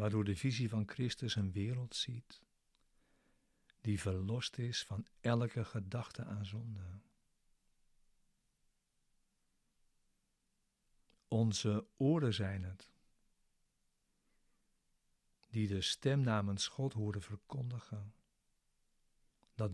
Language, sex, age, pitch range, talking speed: Dutch, male, 60-79, 105-120 Hz, 85 wpm